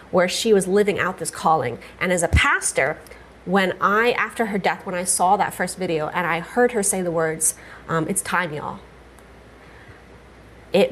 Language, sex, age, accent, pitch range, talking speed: English, female, 30-49, American, 170-205 Hz, 185 wpm